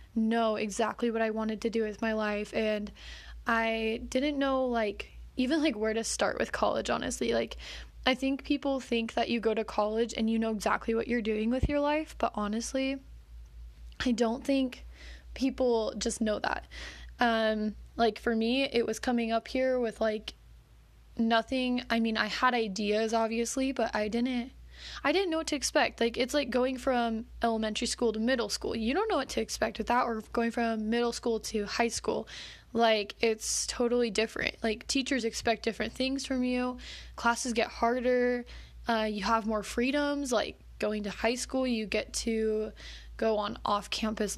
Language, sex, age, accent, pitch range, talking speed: English, female, 10-29, American, 220-250 Hz, 185 wpm